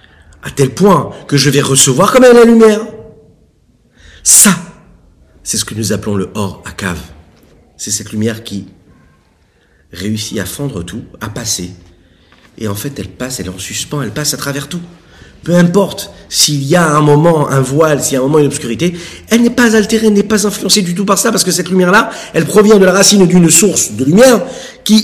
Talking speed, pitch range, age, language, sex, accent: 210 wpm, 130-205 Hz, 50-69, French, male, French